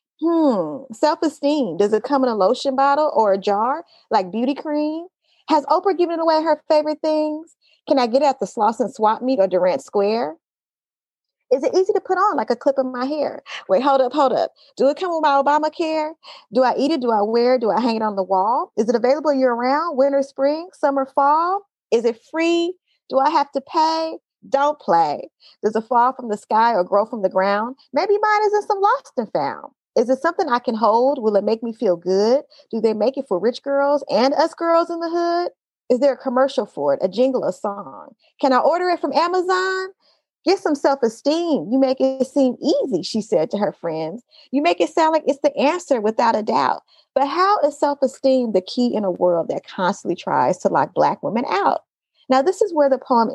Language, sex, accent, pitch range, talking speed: English, female, American, 235-315 Hz, 220 wpm